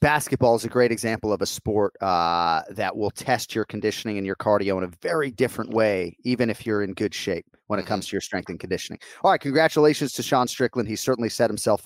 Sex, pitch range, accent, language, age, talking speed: male, 110-150 Hz, American, English, 30-49, 235 wpm